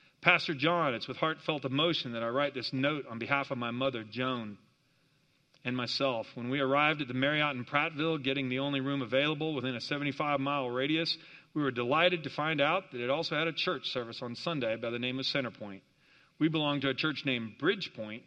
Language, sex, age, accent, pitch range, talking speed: English, male, 40-59, American, 125-155 Hz, 205 wpm